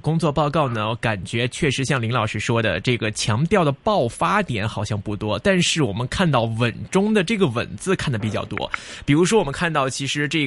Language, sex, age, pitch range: Chinese, male, 20-39, 120-185 Hz